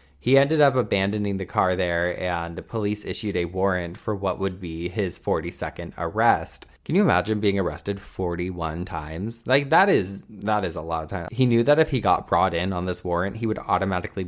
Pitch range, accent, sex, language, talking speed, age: 90-110 Hz, American, male, English, 210 wpm, 20-39